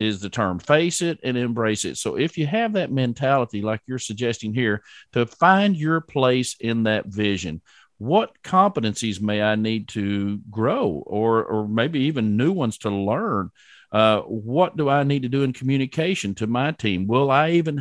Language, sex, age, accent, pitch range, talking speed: English, male, 50-69, American, 110-145 Hz, 185 wpm